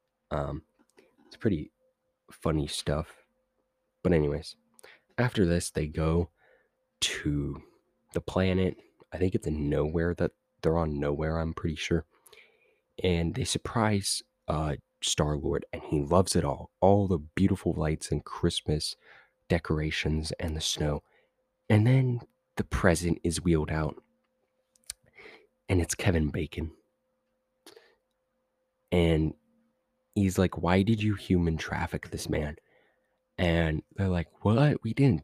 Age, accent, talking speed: 20-39, American, 125 wpm